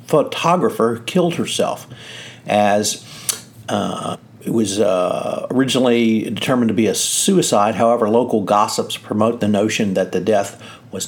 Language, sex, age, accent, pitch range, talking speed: English, male, 50-69, American, 105-120 Hz, 130 wpm